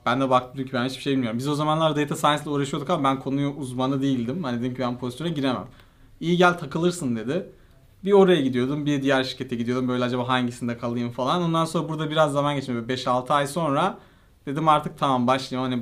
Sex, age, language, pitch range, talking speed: male, 40-59, Turkish, 125-150 Hz, 210 wpm